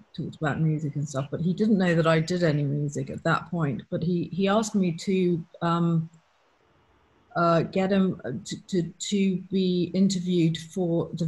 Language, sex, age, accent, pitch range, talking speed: English, female, 40-59, British, 155-190 Hz, 180 wpm